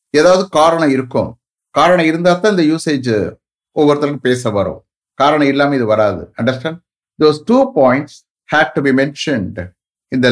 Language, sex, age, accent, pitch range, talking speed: English, male, 60-79, Indian, 115-165 Hz, 75 wpm